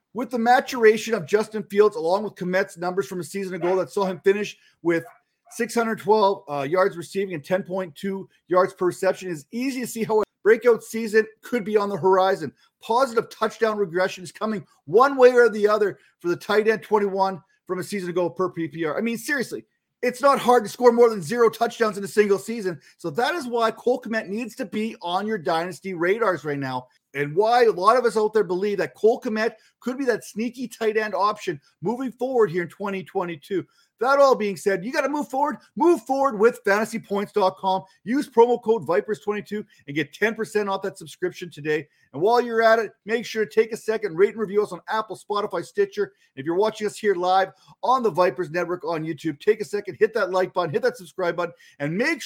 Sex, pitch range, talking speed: male, 185-240 Hz, 215 wpm